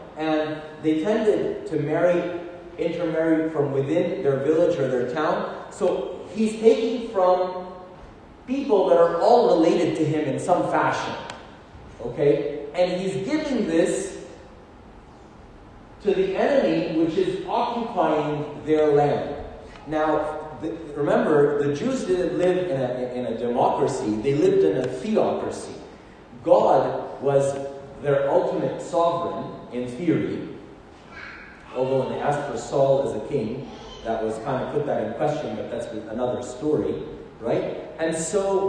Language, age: English, 30-49